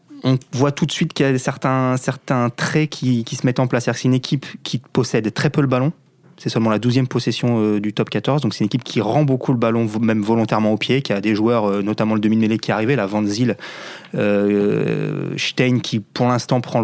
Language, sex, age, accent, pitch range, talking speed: French, male, 20-39, French, 105-135 Hz, 245 wpm